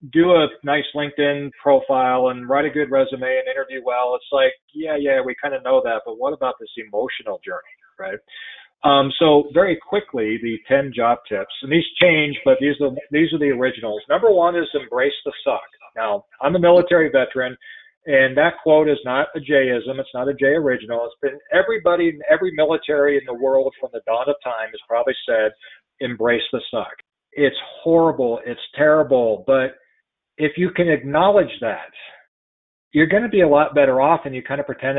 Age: 40-59